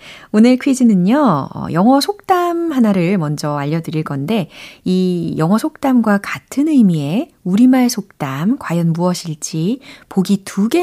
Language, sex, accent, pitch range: Korean, female, native, 165-250 Hz